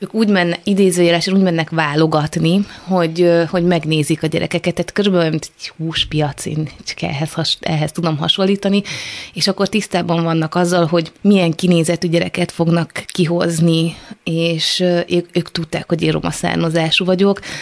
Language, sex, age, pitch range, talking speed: Hungarian, female, 20-39, 165-185 Hz, 145 wpm